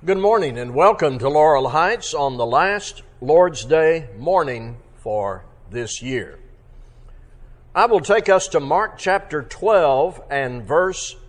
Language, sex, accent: English, male, American